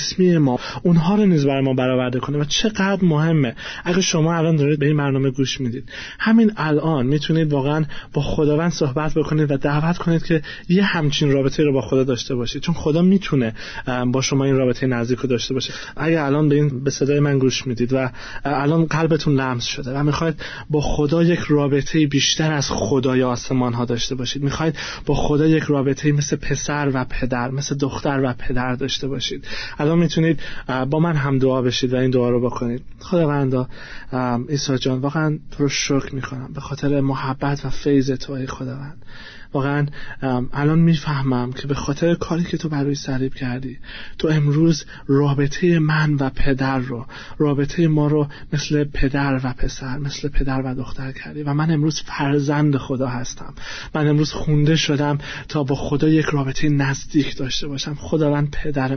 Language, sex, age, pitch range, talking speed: Persian, male, 20-39, 130-155 Hz, 170 wpm